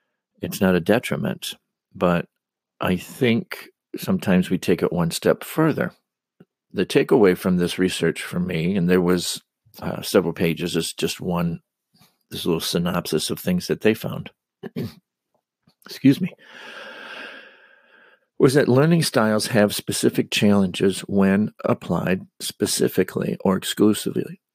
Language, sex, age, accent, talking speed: English, male, 50-69, American, 125 wpm